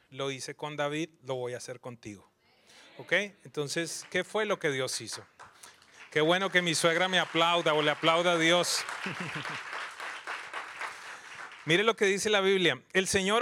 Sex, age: male, 30-49